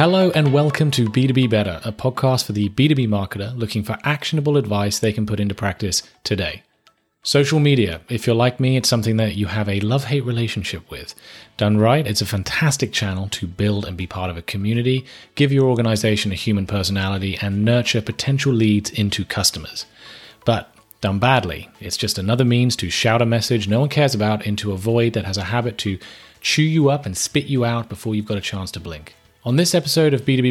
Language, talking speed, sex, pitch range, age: English, 205 wpm, male, 100-125 Hz, 30-49